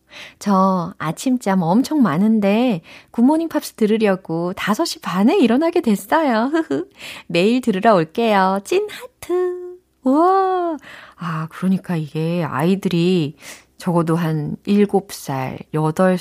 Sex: female